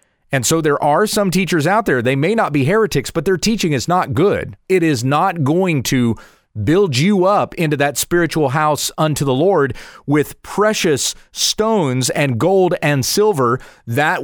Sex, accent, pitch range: male, American, 125-170 Hz